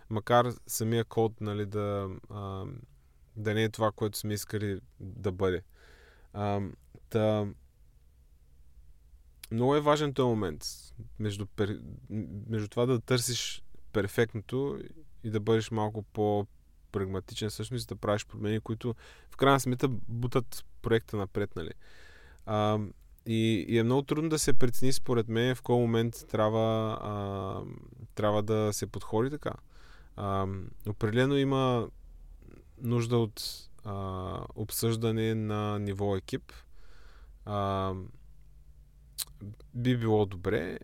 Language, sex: Bulgarian, male